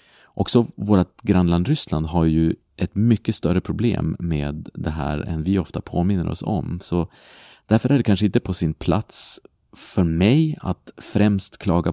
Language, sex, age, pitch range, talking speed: Swedish, male, 30-49, 85-105 Hz, 165 wpm